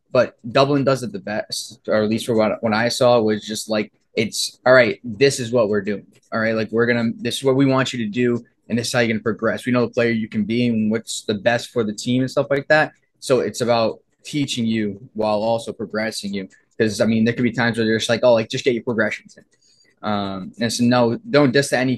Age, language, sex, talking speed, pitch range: 20-39, English, male, 280 wpm, 105-120 Hz